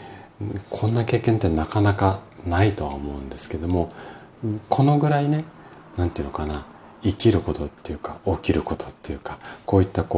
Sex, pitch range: male, 80-110 Hz